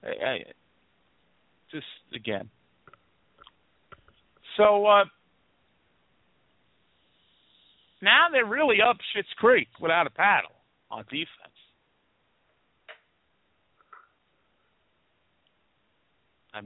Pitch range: 95-160 Hz